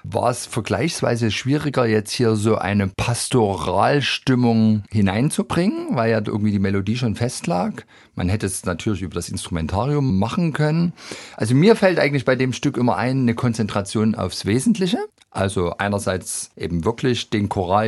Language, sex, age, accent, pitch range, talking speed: German, male, 50-69, German, 105-135 Hz, 155 wpm